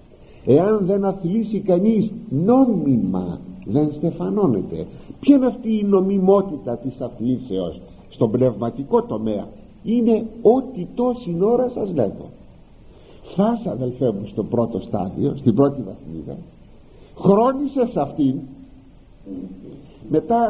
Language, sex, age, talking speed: Greek, male, 60-79, 105 wpm